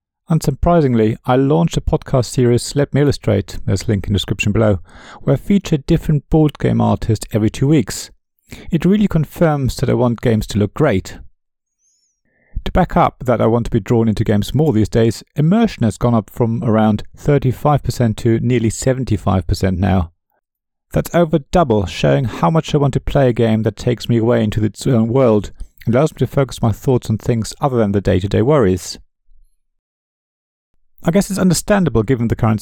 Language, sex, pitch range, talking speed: English, male, 105-145 Hz, 190 wpm